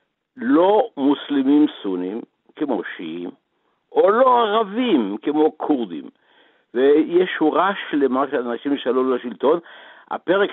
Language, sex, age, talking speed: Hebrew, male, 60-79, 105 wpm